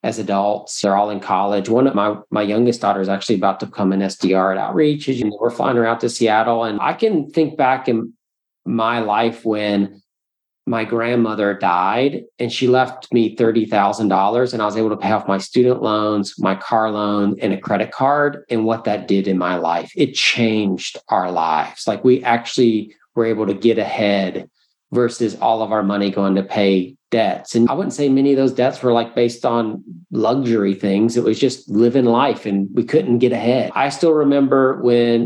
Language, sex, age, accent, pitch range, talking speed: English, male, 40-59, American, 105-125 Hz, 200 wpm